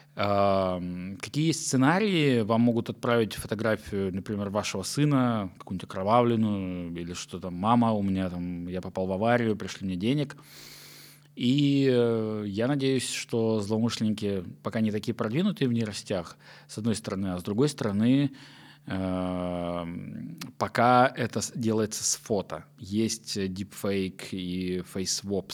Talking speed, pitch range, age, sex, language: 120 wpm, 95-120 Hz, 20-39, male, Russian